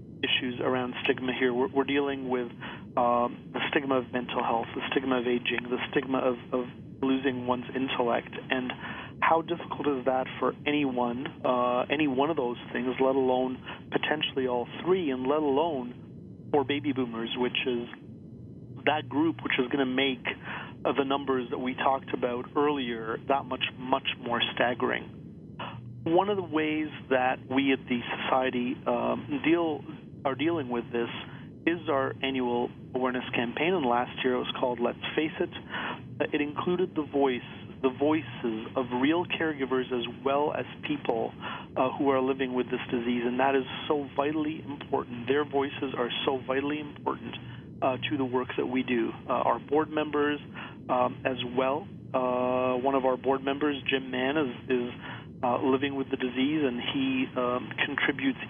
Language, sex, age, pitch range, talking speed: English, male, 40-59, 125-145 Hz, 170 wpm